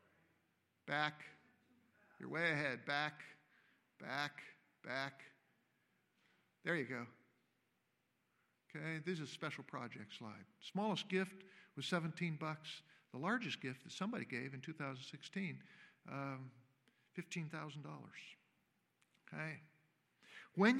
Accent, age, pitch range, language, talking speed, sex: American, 50-69, 140-185 Hz, English, 100 wpm, male